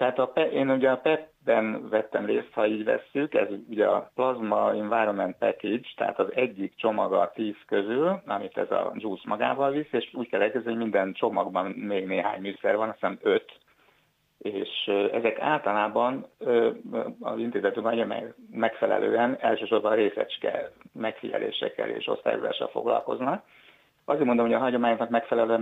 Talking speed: 145 wpm